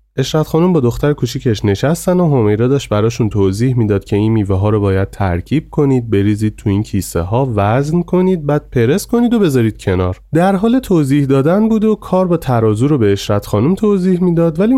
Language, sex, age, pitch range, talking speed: Persian, male, 30-49, 95-155 Hz, 200 wpm